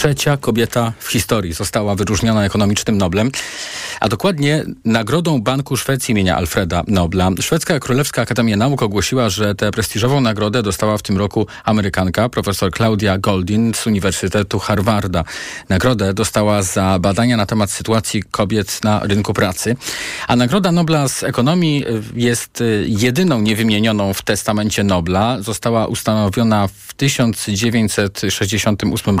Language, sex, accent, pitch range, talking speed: Polish, male, native, 100-115 Hz, 125 wpm